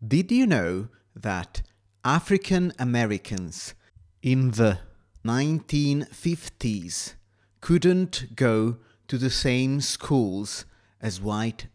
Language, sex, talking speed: Italian, male, 80 wpm